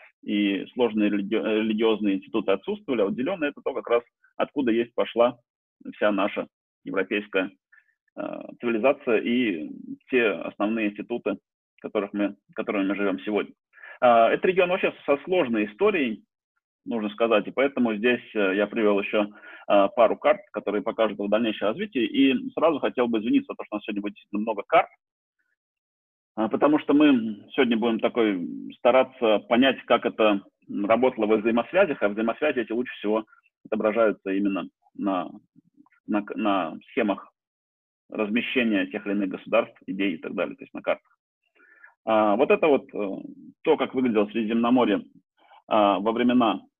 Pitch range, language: 105-150 Hz, Russian